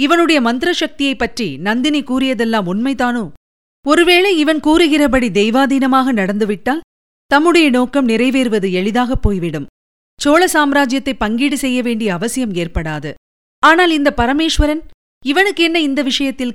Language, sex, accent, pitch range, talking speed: Tamil, female, native, 220-280 Hz, 100 wpm